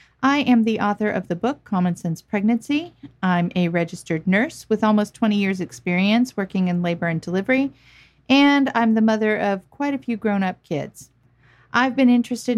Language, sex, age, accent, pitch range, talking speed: English, female, 50-69, American, 175-225 Hz, 175 wpm